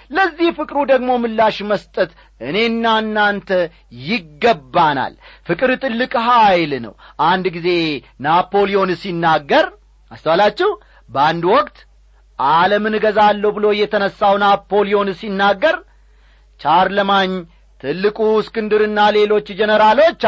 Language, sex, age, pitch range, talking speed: Amharic, male, 40-59, 185-245 Hz, 90 wpm